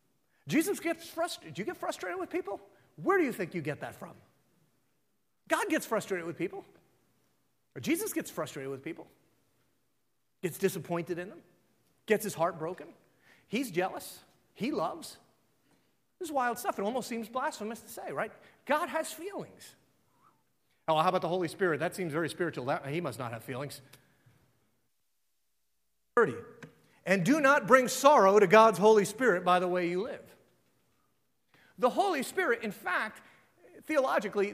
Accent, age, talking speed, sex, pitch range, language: American, 40-59, 160 wpm, male, 180-270 Hz, English